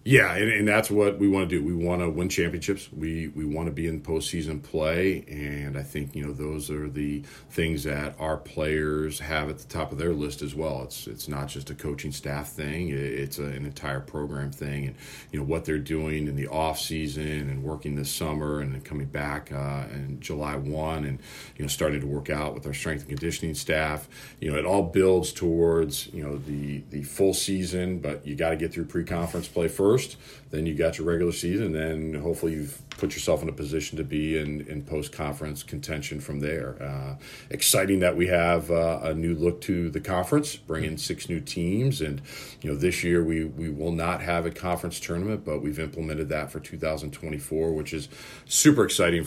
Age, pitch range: 40-59, 75-85 Hz